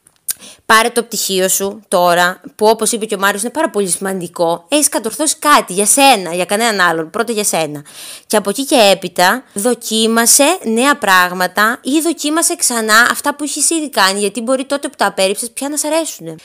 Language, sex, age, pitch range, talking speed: Greek, female, 20-39, 180-255 Hz, 190 wpm